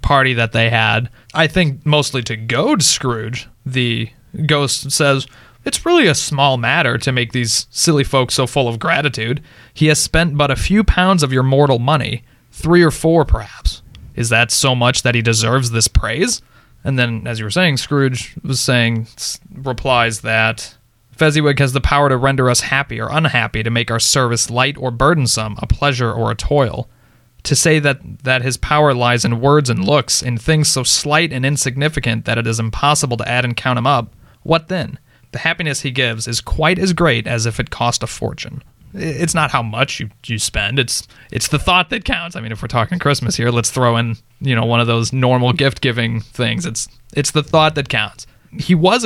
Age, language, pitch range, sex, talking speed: 20-39, English, 115-150 Hz, male, 205 wpm